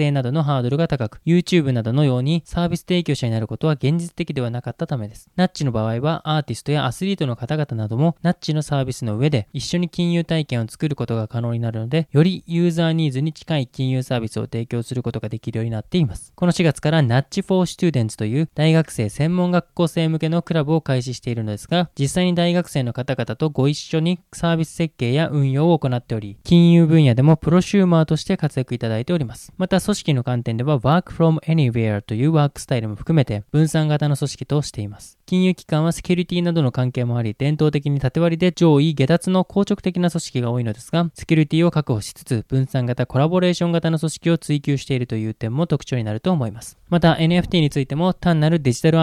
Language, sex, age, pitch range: Japanese, male, 20-39, 130-165 Hz